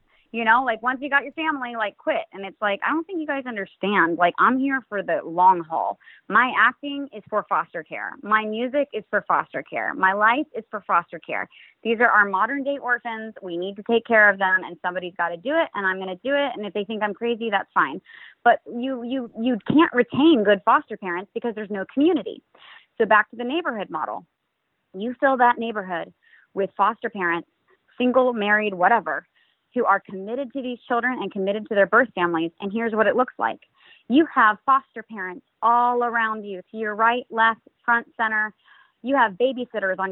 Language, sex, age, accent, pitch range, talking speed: English, female, 20-39, American, 205-265 Hz, 210 wpm